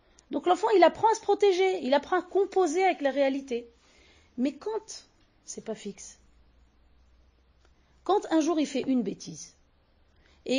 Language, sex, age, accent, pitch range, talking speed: French, female, 40-59, French, 205-315 Hz, 155 wpm